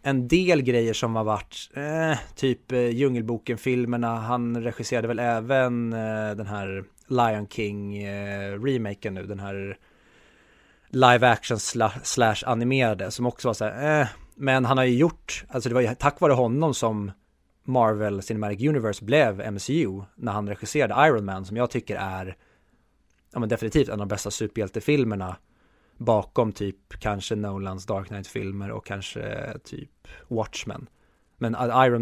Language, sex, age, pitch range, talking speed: Swedish, male, 20-39, 100-125 Hz, 140 wpm